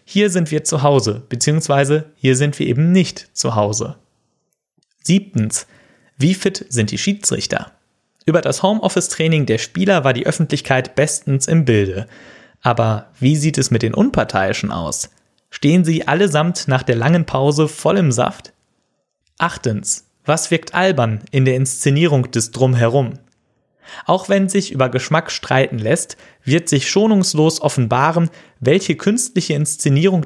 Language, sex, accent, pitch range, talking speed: German, male, German, 130-180 Hz, 140 wpm